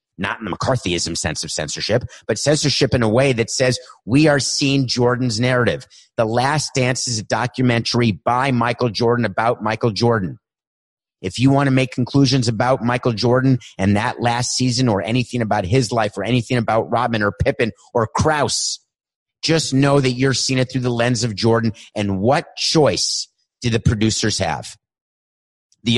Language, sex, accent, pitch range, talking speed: English, male, American, 100-130 Hz, 175 wpm